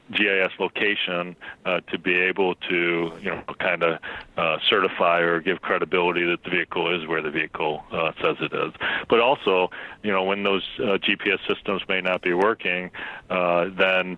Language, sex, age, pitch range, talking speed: English, male, 40-59, 85-95 Hz, 180 wpm